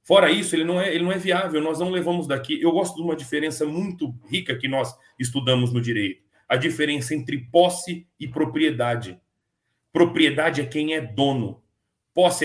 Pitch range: 135-180 Hz